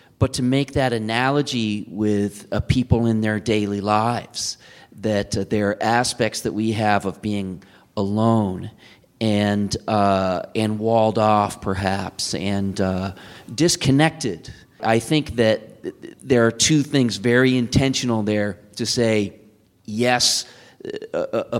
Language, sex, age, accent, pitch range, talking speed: English, male, 30-49, American, 105-130 Hz, 130 wpm